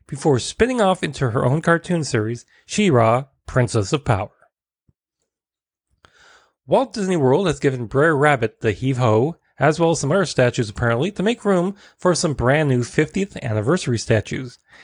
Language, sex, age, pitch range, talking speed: English, male, 30-49, 120-160 Hz, 155 wpm